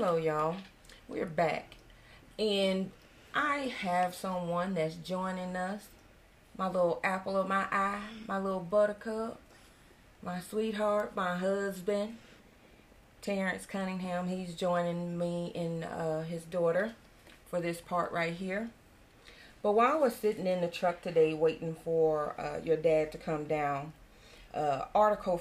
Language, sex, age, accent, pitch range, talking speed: English, female, 30-49, American, 160-195 Hz, 135 wpm